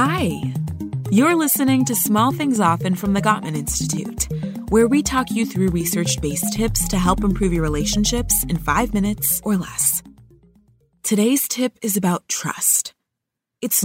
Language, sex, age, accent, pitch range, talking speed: English, female, 20-39, American, 165-215 Hz, 145 wpm